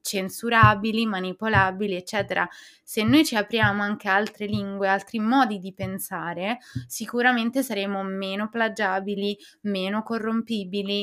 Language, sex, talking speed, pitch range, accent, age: Italian, female, 110 wpm, 195-225 Hz, native, 20-39